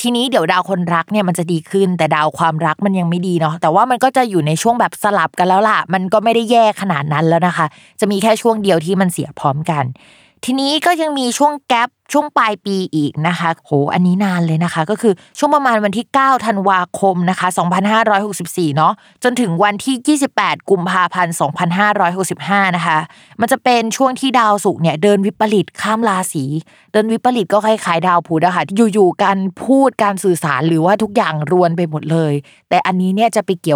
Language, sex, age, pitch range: Thai, female, 20-39, 165-225 Hz